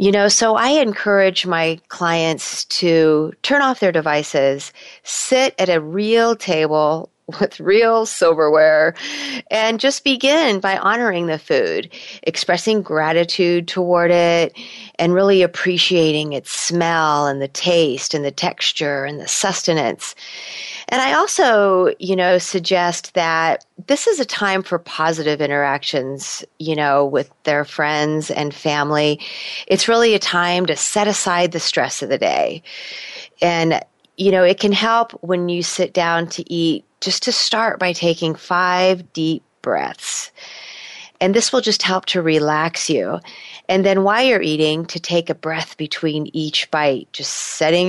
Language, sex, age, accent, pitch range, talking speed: English, female, 30-49, American, 155-205 Hz, 150 wpm